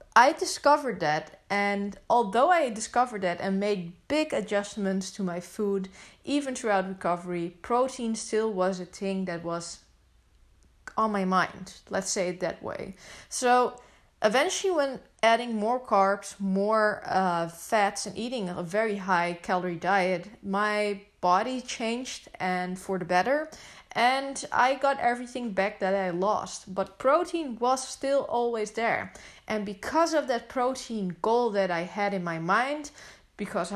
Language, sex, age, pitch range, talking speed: English, female, 20-39, 190-245 Hz, 150 wpm